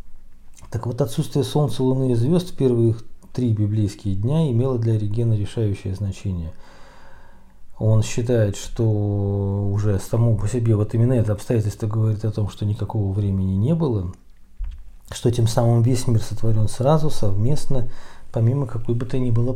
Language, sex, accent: Russian, male, native